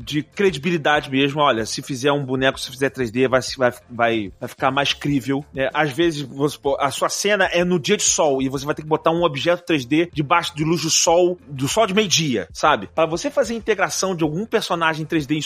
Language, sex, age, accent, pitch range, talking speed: Portuguese, male, 30-49, Brazilian, 150-210 Hz, 215 wpm